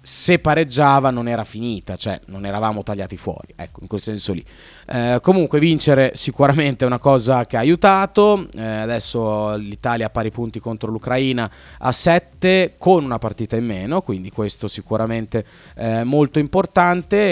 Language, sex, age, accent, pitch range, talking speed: Italian, male, 30-49, native, 105-130 Hz, 160 wpm